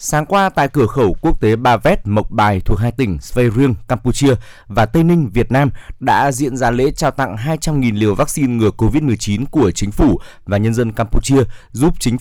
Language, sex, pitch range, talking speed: Vietnamese, male, 110-140 Hz, 200 wpm